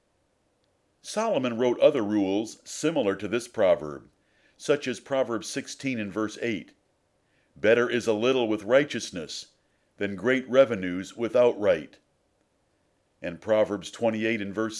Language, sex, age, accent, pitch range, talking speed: English, male, 50-69, American, 105-140 Hz, 125 wpm